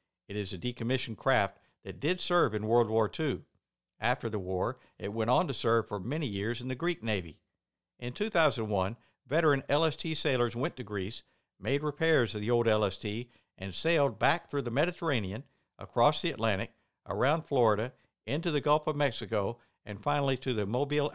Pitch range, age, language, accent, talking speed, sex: 105-145 Hz, 60-79, English, American, 175 wpm, male